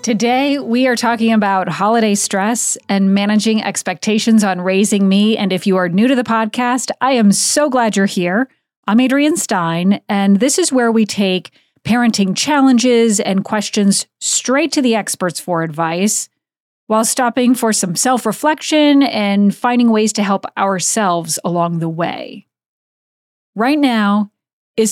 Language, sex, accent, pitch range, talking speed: English, female, American, 195-260 Hz, 150 wpm